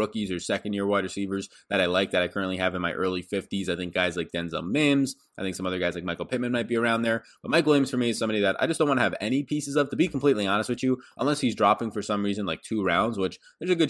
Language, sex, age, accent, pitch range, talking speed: English, male, 20-39, American, 95-125 Hz, 305 wpm